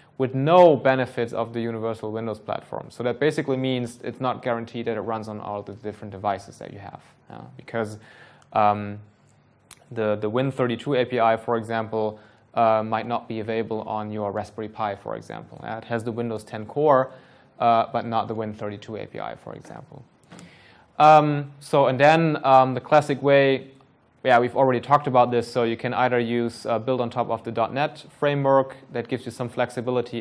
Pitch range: 110-125 Hz